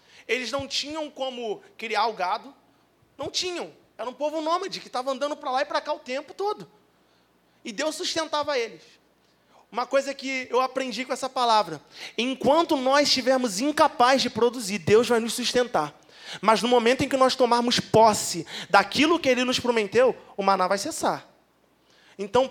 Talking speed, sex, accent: 170 wpm, male, Brazilian